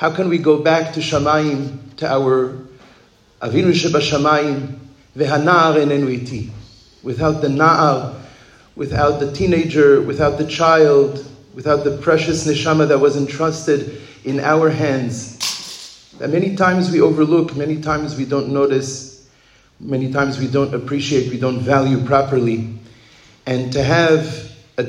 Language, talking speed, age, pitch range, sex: English, 130 wpm, 40-59, 135-160 Hz, male